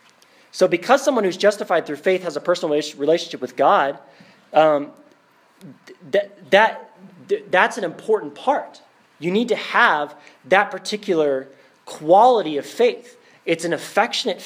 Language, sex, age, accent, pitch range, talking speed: English, male, 30-49, American, 145-185 Hz, 125 wpm